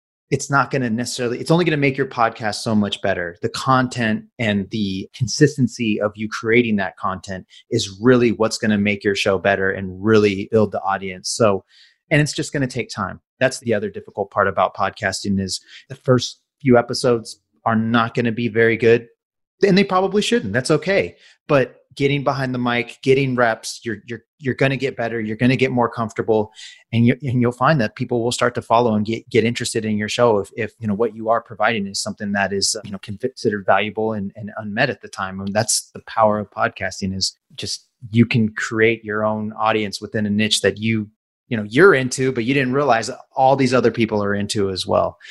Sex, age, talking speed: male, 30-49, 225 wpm